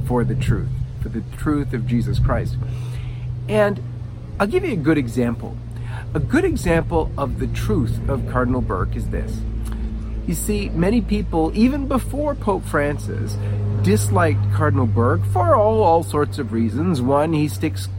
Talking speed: 155 wpm